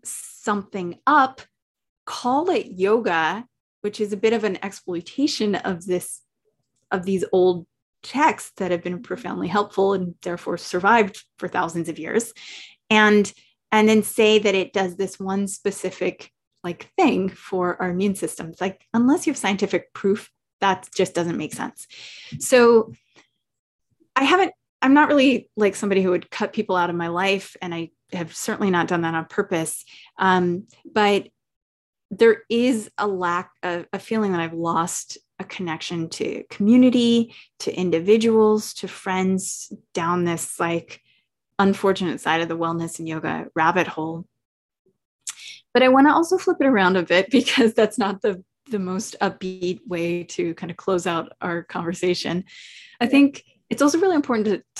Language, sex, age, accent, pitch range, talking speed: English, female, 20-39, American, 175-220 Hz, 160 wpm